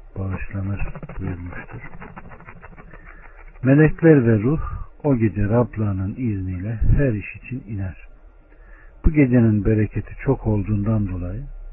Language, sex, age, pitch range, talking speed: Turkish, male, 60-79, 95-125 Hz, 95 wpm